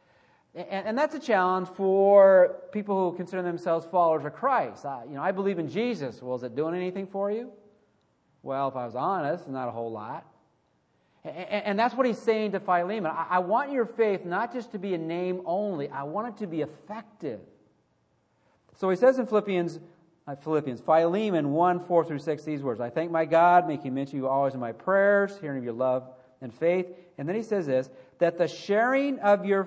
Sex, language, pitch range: male, English, 145-200 Hz